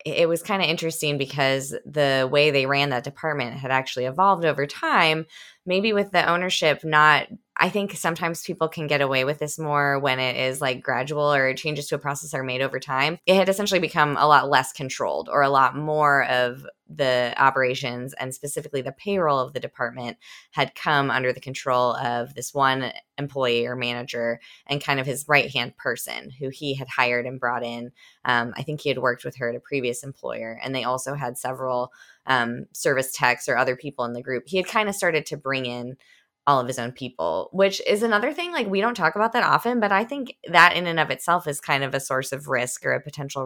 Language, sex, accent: English, female, American